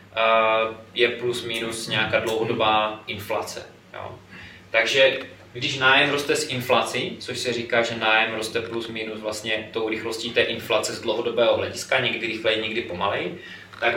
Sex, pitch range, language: male, 115-140 Hz, Czech